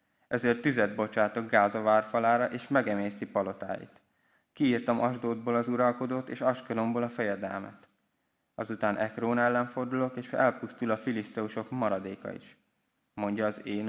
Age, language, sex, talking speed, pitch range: 20-39, Hungarian, male, 125 wpm, 100-120 Hz